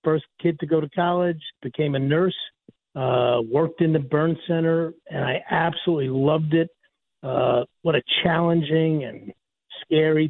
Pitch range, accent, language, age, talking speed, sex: 145-175 Hz, American, English, 50-69, 150 wpm, male